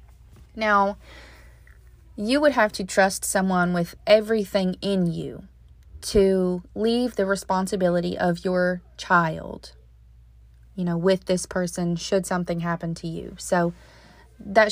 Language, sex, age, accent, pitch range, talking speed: English, female, 20-39, American, 165-205 Hz, 120 wpm